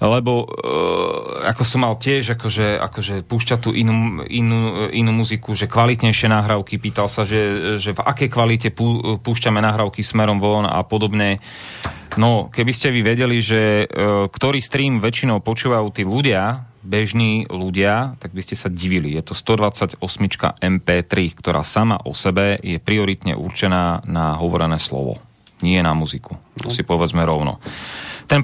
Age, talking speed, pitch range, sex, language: 30-49, 155 wpm, 100-120 Hz, male, Slovak